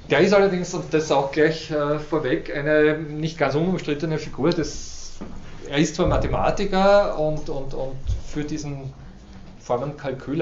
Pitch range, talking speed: 110-145 Hz, 130 wpm